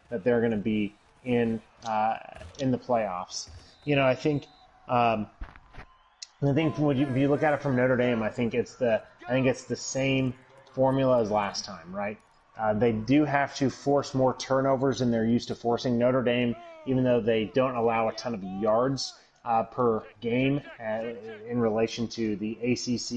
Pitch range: 115-135 Hz